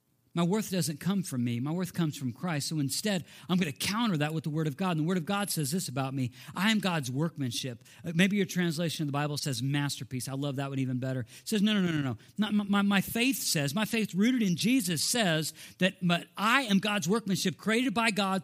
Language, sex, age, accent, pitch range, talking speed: English, male, 50-69, American, 150-210 Hz, 245 wpm